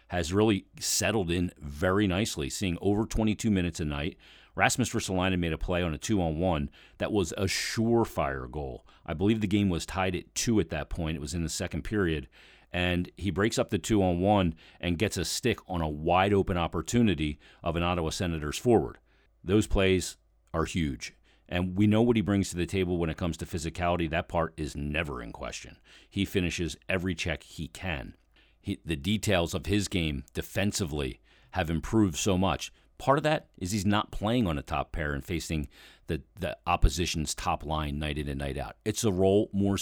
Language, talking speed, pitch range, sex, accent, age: English, 195 wpm, 80-100 Hz, male, American, 40-59